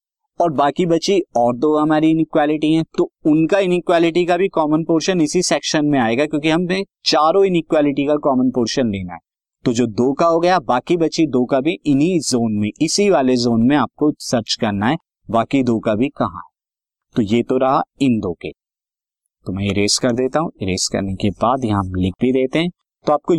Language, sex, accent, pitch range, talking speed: Hindi, male, native, 115-155 Hz, 130 wpm